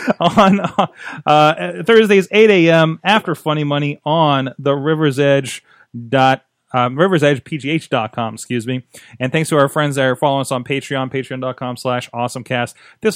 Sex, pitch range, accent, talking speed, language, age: male, 125-165 Hz, American, 175 wpm, English, 30-49